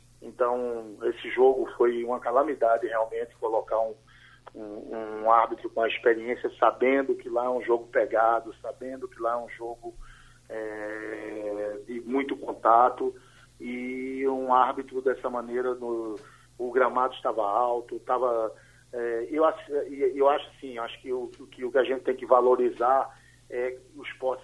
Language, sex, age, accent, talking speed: Portuguese, male, 50-69, Brazilian, 155 wpm